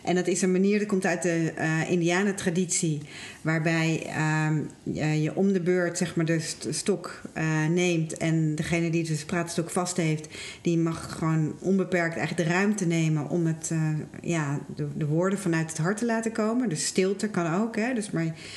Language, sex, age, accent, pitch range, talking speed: Dutch, female, 40-59, Dutch, 160-195 Hz, 195 wpm